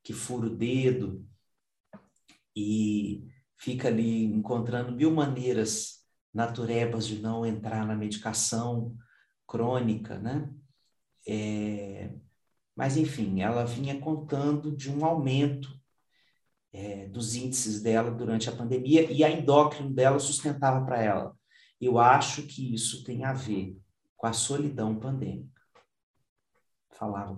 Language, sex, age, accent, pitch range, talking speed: Portuguese, male, 40-59, Brazilian, 110-140 Hz, 115 wpm